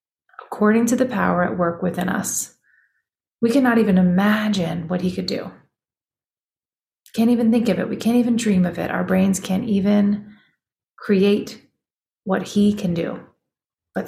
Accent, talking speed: American, 160 wpm